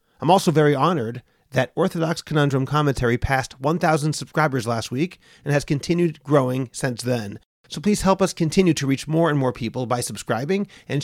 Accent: American